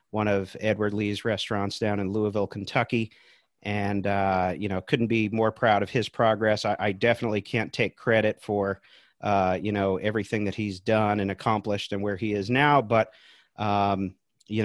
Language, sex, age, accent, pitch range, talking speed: English, male, 40-59, American, 100-110 Hz, 180 wpm